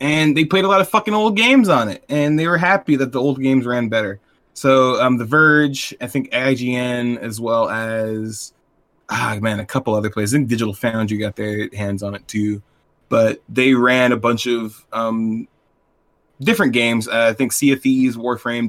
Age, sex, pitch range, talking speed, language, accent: 20-39, male, 110-125 Hz, 200 wpm, English, American